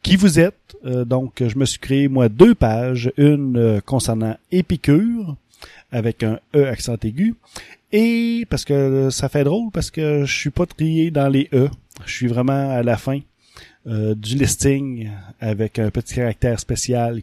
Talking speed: 170 wpm